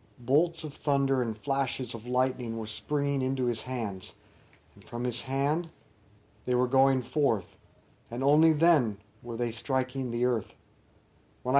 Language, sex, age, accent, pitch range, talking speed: English, male, 50-69, American, 110-145 Hz, 150 wpm